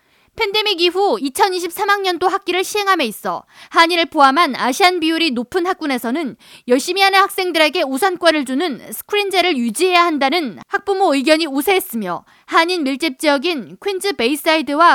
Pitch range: 285-370 Hz